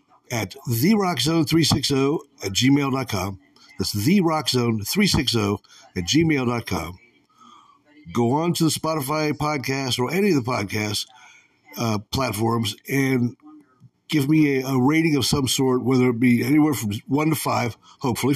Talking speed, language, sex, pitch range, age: 125 wpm, English, male, 105-150 Hz, 60-79